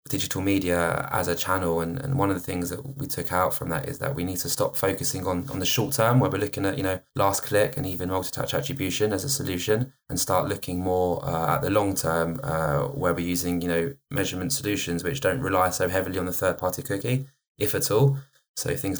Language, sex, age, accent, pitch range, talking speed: English, male, 20-39, British, 90-105 Hz, 240 wpm